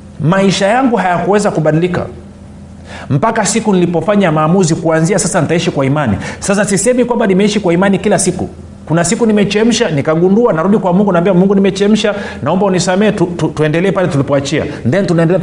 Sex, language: male, Swahili